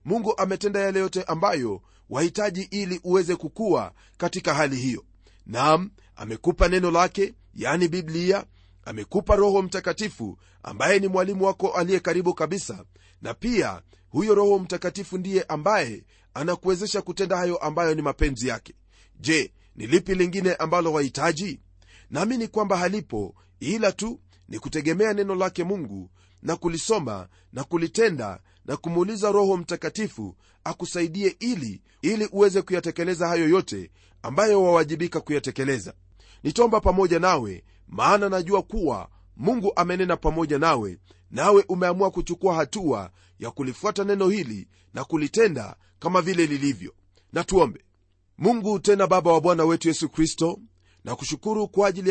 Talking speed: 130 wpm